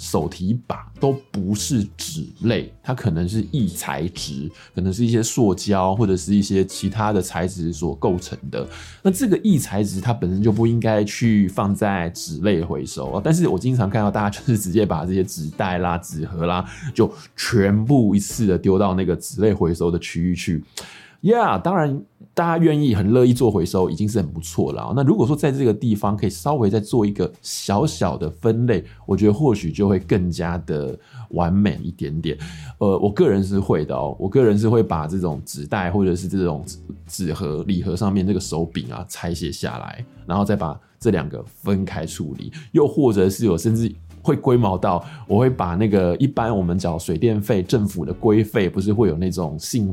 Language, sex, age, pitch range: Chinese, male, 20-39, 90-115 Hz